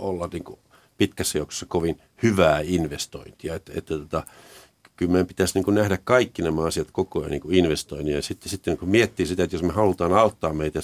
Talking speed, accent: 200 wpm, native